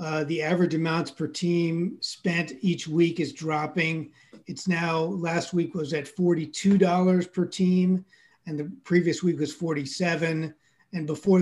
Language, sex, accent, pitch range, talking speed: English, male, American, 160-190 Hz, 145 wpm